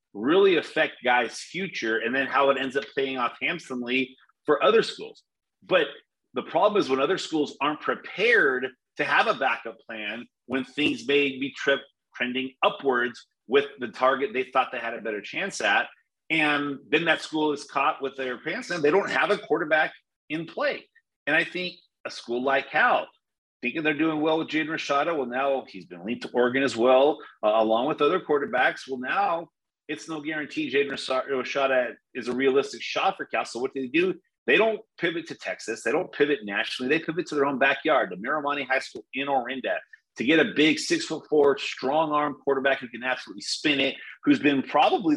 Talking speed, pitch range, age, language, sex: 195 wpm, 130-190 Hz, 30-49, English, male